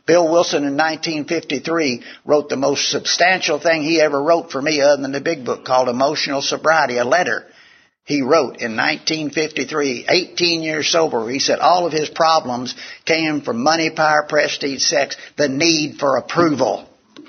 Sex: male